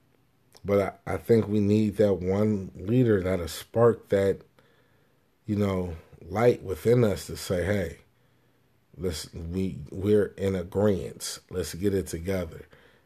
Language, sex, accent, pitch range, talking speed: English, male, American, 90-110 Hz, 130 wpm